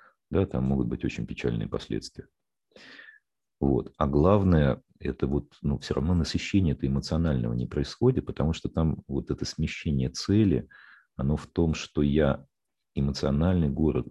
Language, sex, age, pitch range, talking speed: Russian, male, 40-59, 65-80 Hz, 140 wpm